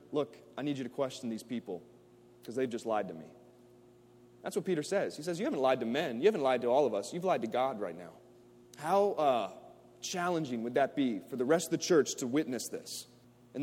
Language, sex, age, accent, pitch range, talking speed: English, male, 30-49, American, 120-160 Hz, 240 wpm